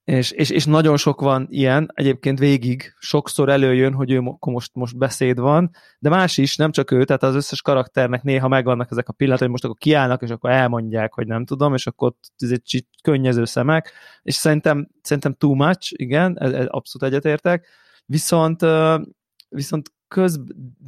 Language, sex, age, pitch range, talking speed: Hungarian, male, 20-39, 125-150 Hz, 180 wpm